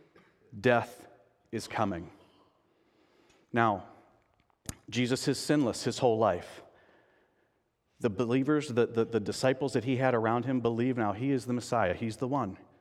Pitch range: 115-180 Hz